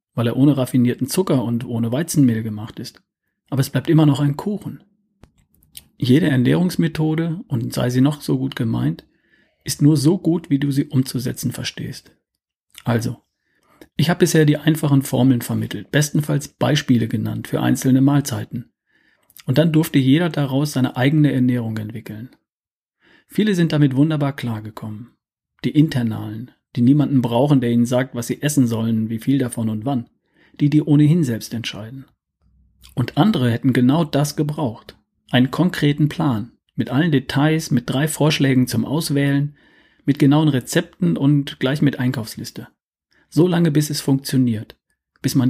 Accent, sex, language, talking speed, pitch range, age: German, male, German, 155 wpm, 120-150 Hz, 40-59